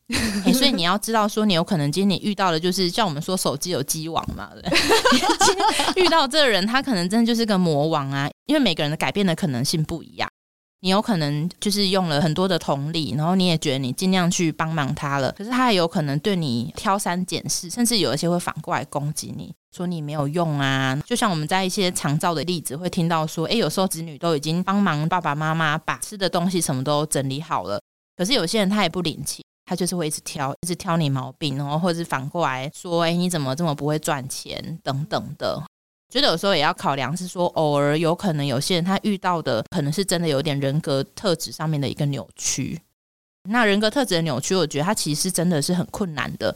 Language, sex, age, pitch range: Chinese, female, 20-39, 150-190 Hz